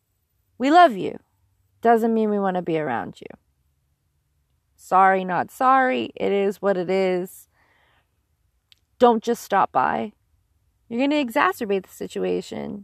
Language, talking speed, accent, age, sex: English, 135 wpm, American, 20-39, female